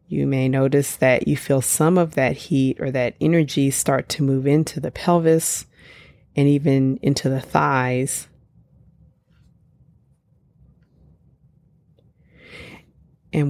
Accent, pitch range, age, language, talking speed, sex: American, 140-170 Hz, 30-49, English, 110 wpm, female